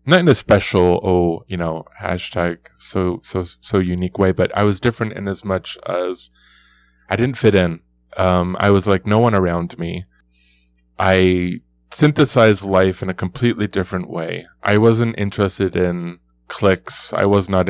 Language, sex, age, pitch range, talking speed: English, male, 20-39, 90-105 Hz, 165 wpm